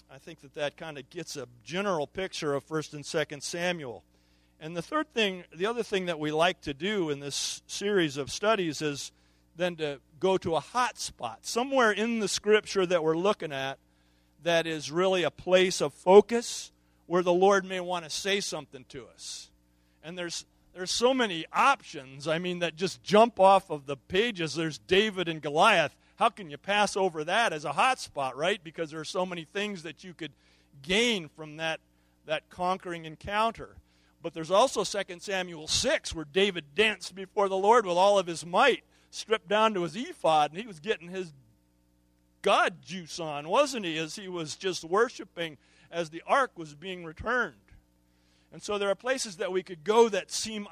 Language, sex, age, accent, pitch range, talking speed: English, male, 40-59, American, 150-200 Hz, 195 wpm